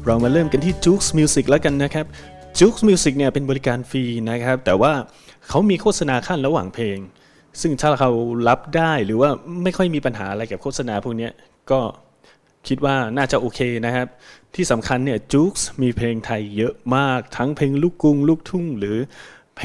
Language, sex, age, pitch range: Thai, male, 20-39, 115-145 Hz